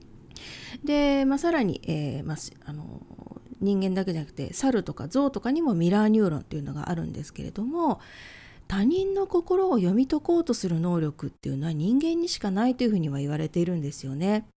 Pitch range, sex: 160-265 Hz, female